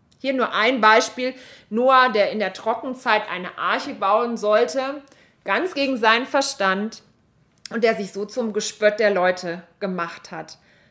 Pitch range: 185-240 Hz